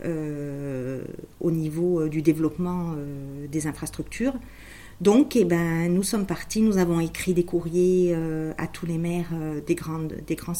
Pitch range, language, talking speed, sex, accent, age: 155-185 Hz, French, 170 wpm, female, French, 50-69